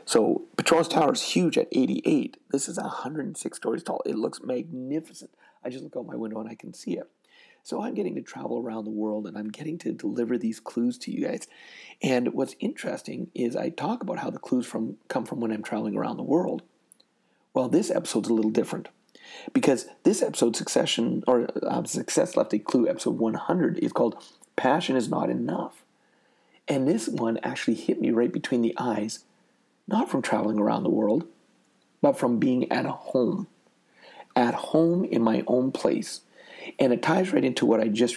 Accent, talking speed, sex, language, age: American, 190 wpm, male, English, 40-59